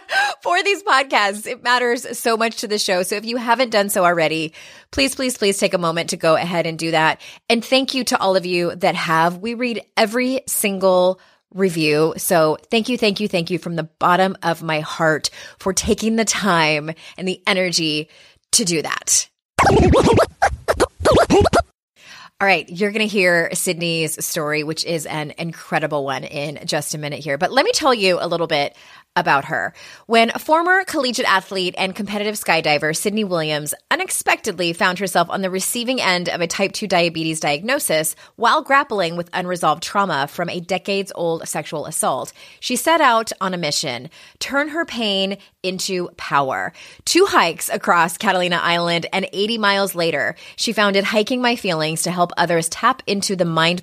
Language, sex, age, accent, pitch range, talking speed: English, female, 20-39, American, 165-225 Hz, 175 wpm